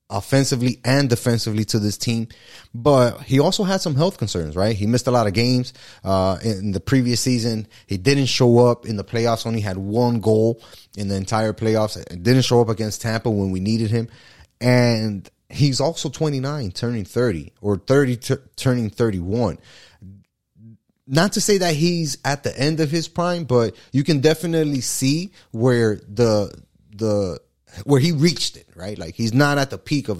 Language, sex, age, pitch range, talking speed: English, male, 30-49, 105-135 Hz, 180 wpm